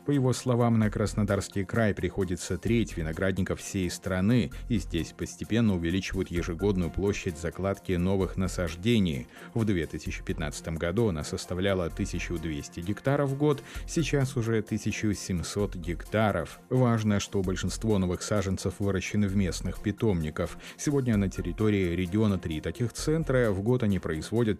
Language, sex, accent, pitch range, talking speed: Russian, male, native, 90-115 Hz, 130 wpm